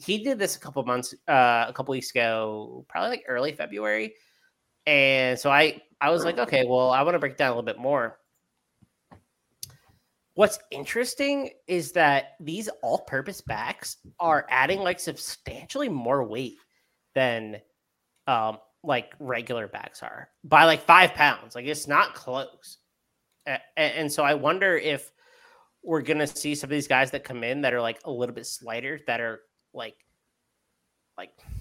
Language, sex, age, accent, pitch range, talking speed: English, male, 20-39, American, 115-150 Hz, 175 wpm